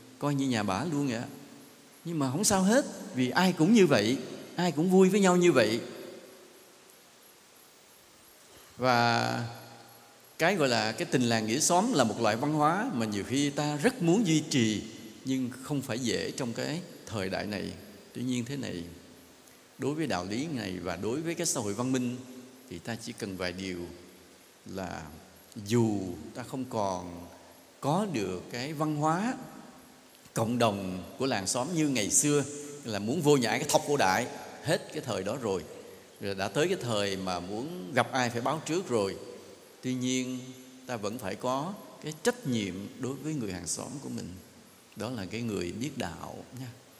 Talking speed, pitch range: 185 wpm, 105-145 Hz